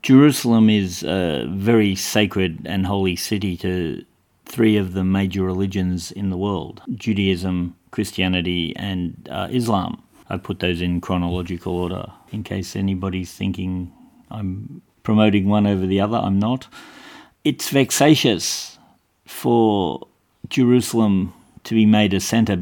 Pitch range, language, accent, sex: 95-115 Hz, English, Australian, male